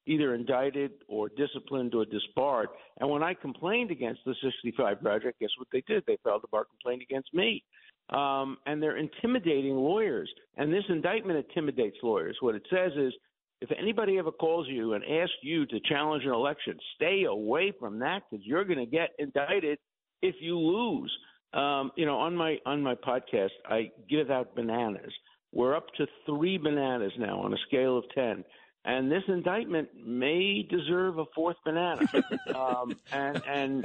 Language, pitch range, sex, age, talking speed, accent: English, 125-175 Hz, male, 50-69, 175 wpm, American